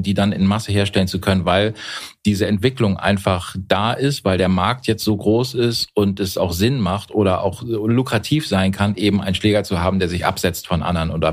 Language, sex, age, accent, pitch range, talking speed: German, male, 40-59, German, 95-115 Hz, 215 wpm